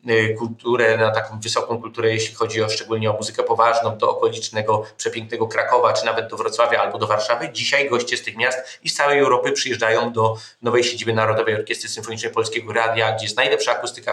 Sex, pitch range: male, 120-145 Hz